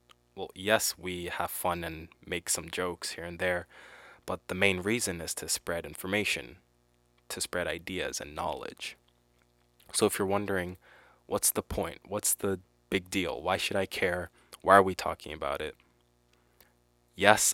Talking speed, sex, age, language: 160 wpm, male, 20-39, English